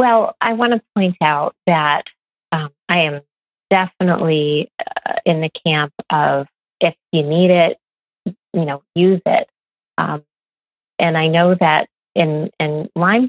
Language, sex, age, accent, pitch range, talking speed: English, female, 30-49, American, 150-180 Hz, 145 wpm